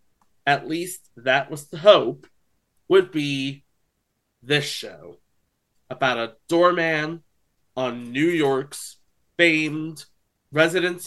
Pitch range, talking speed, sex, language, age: 130-170 Hz, 100 wpm, male, English, 30-49